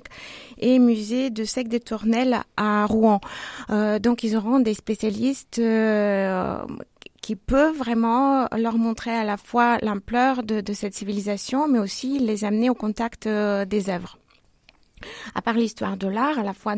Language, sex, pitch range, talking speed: French, female, 210-245 Hz, 160 wpm